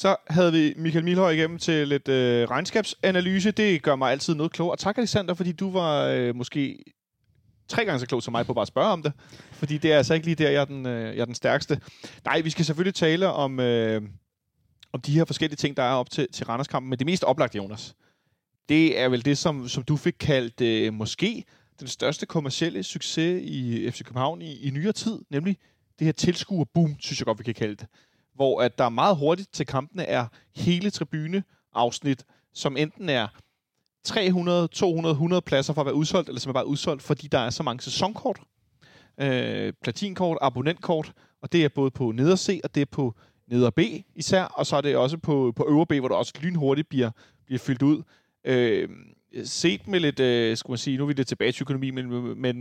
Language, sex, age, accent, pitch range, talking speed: Danish, male, 30-49, native, 130-165 Hz, 220 wpm